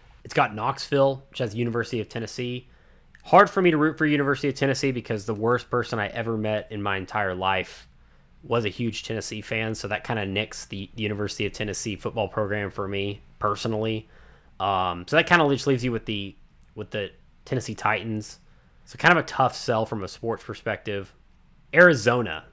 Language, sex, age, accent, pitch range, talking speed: English, male, 20-39, American, 95-125 Hz, 195 wpm